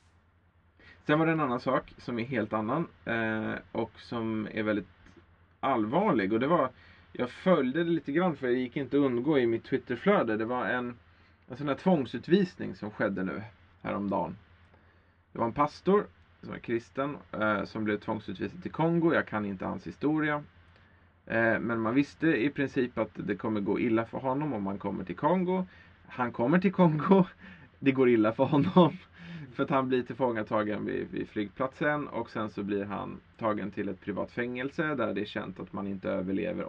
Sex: male